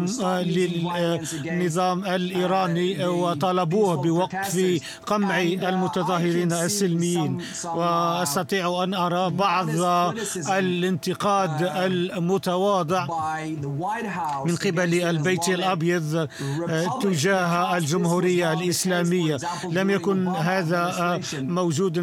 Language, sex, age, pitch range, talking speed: Arabic, male, 50-69, 170-185 Hz, 65 wpm